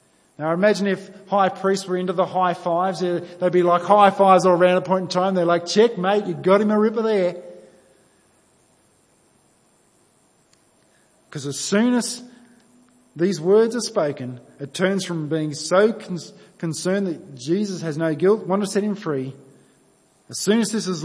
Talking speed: 175 wpm